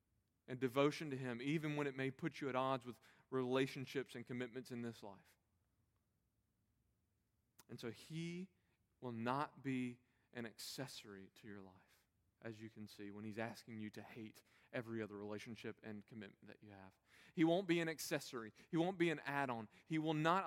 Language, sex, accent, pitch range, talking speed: English, male, American, 105-160 Hz, 180 wpm